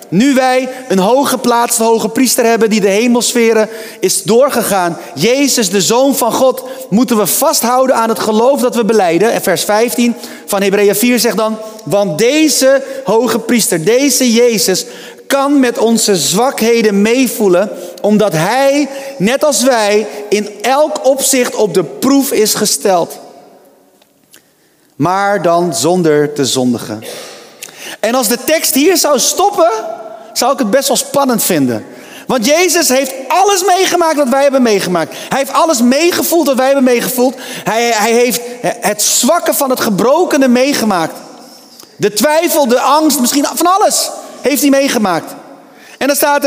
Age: 30-49